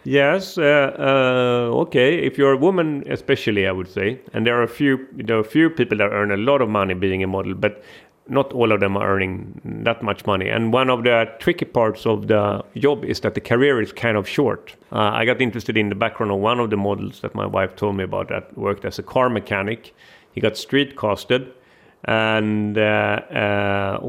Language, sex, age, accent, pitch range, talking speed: German, male, 40-59, Swedish, 105-130 Hz, 220 wpm